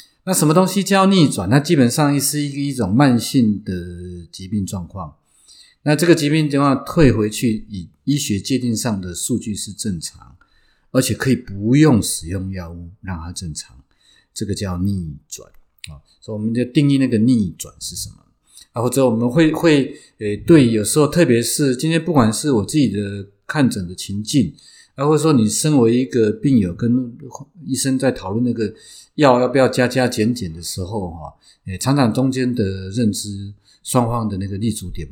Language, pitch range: Chinese, 100-140 Hz